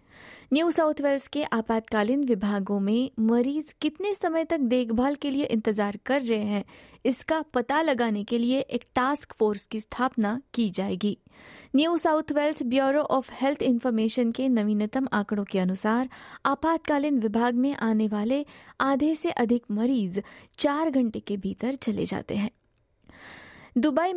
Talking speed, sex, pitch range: 145 wpm, female, 220-285 Hz